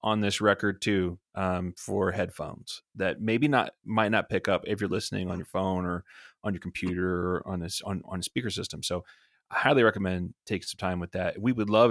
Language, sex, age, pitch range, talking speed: English, male, 30-49, 90-115 Hz, 215 wpm